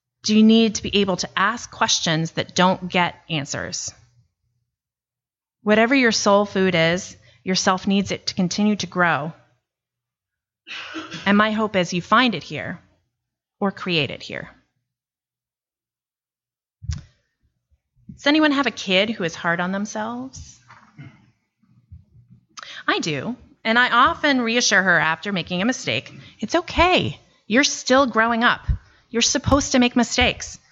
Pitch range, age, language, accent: 165-240 Hz, 30-49, English, American